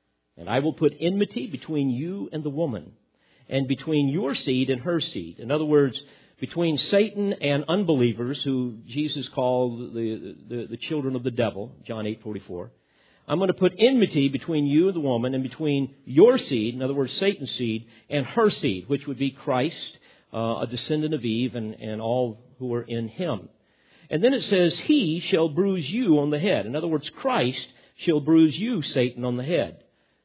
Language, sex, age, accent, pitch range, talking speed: English, male, 50-69, American, 125-165 Hz, 190 wpm